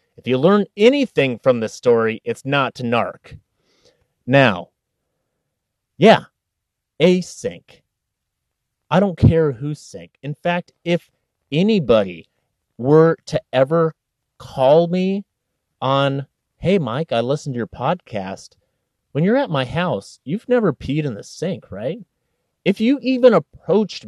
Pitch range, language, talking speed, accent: 120-175 Hz, English, 130 wpm, American